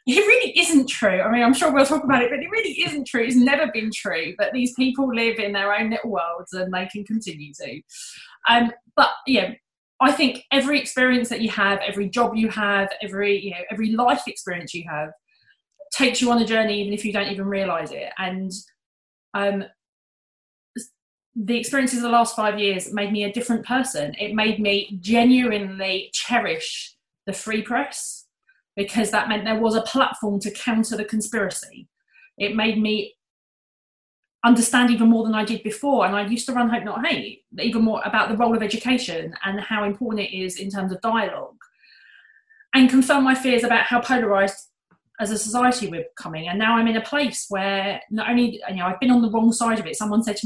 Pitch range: 205-250 Hz